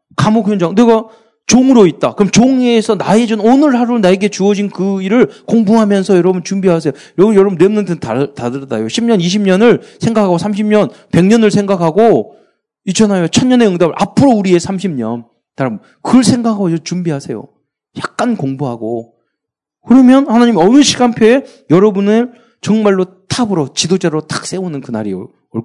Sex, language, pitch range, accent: male, Korean, 160-230 Hz, native